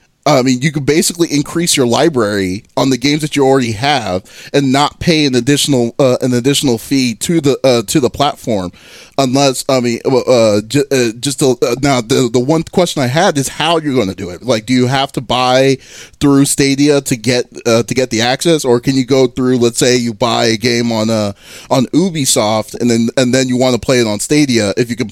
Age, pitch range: 20-39, 120-145 Hz